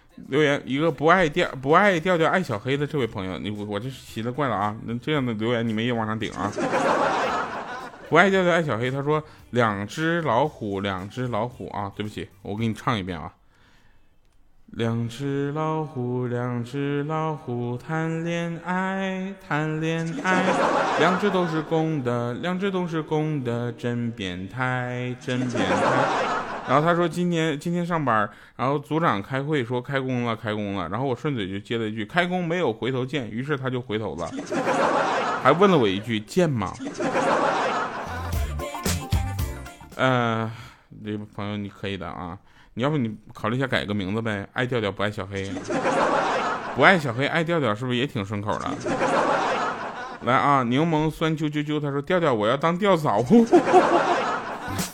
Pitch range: 105-155 Hz